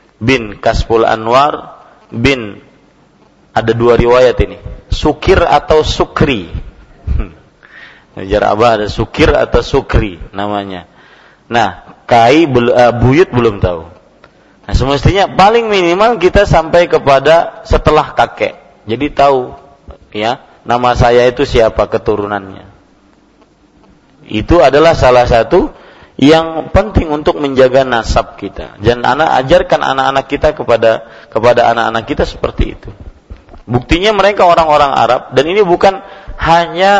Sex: male